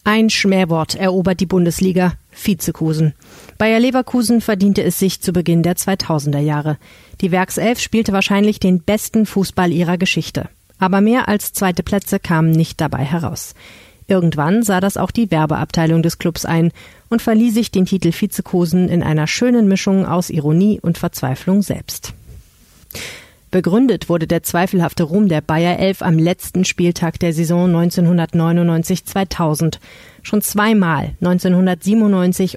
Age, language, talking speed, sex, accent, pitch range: 30-49, German, 140 wpm, female, German, 165-195 Hz